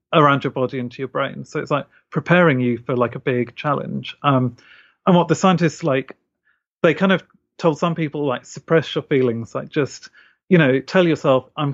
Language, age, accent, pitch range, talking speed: English, 40-59, British, 130-160 Hz, 200 wpm